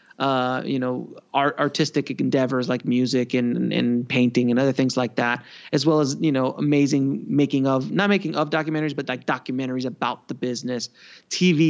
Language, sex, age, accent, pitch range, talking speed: English, male, 30-49, American, 125-140 Hz, 180 wpm